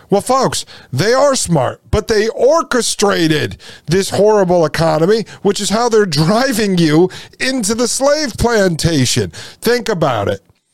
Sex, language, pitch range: male, English, 160-235 Hz